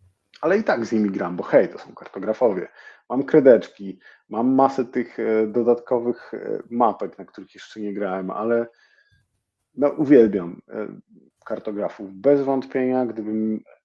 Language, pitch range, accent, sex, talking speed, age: Polish, 100-120 Hz, native, male, 130 wpm, 40-59